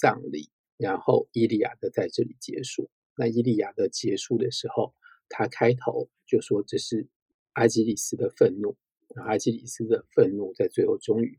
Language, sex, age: Chinese, male, 50-69